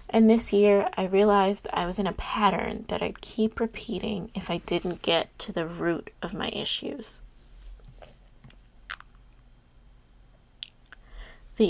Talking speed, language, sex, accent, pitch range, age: 130 wpm, English, female, American, 195-225 Hz, 20-39